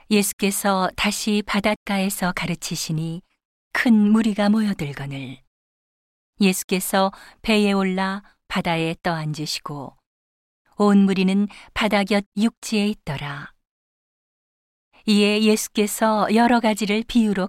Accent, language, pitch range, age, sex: native, Korean, 170-210 Hz, 40-59, female